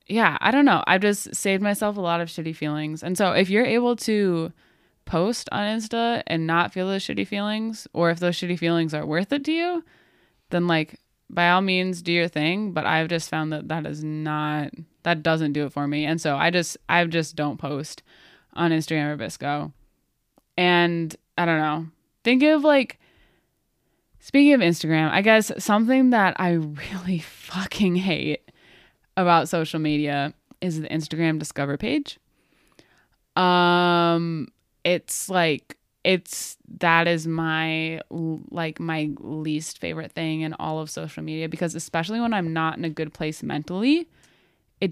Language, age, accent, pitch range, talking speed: English, 20-39, American, 155-195 Hz, 170 wpm